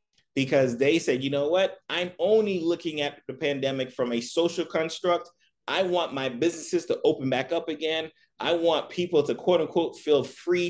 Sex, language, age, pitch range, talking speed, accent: male, English, 30-49, 135-175 Hz, 185 wpm, American